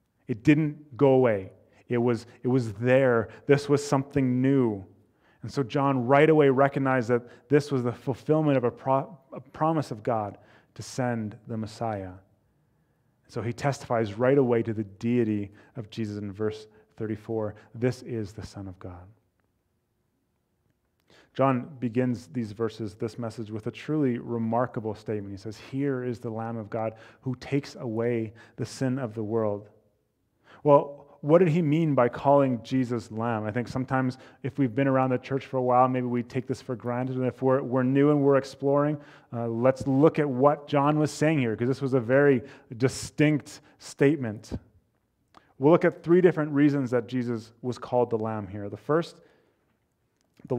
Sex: male